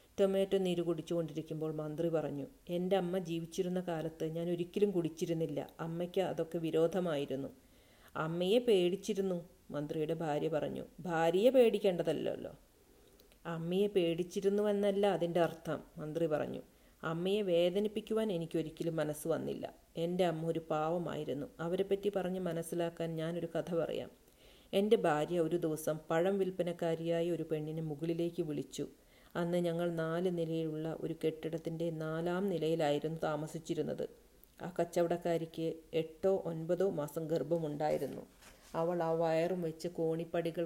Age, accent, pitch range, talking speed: 40-59, native, 160-180 Hz, 110 wpm